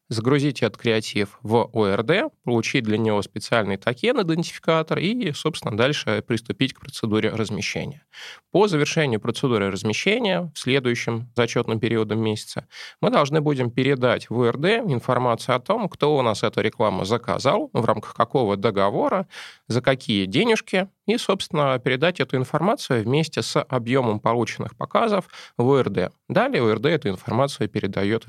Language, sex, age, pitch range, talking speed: Russian, male, 20-39, 105-145 Hz, 140 wpm